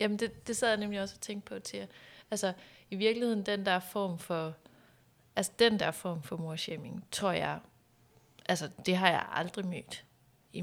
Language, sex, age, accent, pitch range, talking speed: Danish, female, 30-49, native, 160-195 Hz, 185 wpm